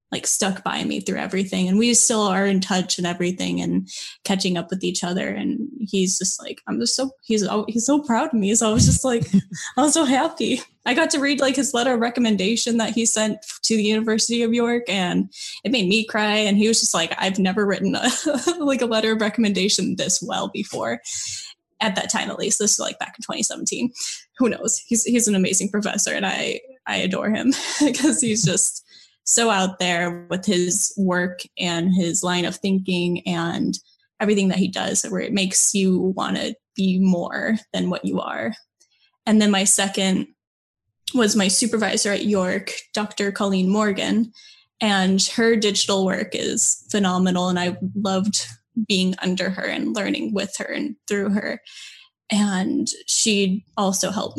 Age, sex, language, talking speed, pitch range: 10-29, female, English, 190 wpm, 185-230 Hz